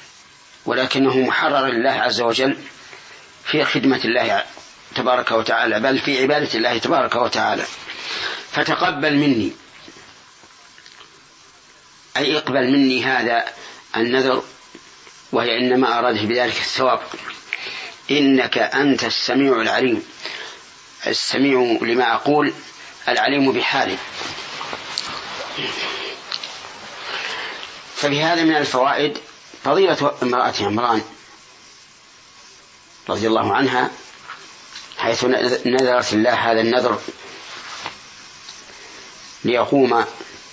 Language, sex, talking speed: Arabic, male, 75 wpm